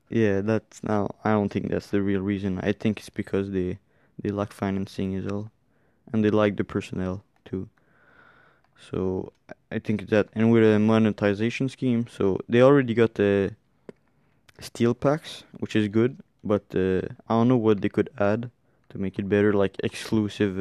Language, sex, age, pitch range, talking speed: English, male, 20-39, 100-115 Hz, 180 wpm